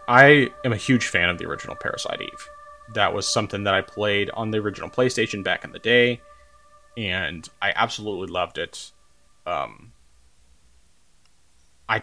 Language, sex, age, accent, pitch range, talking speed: English, male, 20-39, American, 95-115 Hz, 155 wpm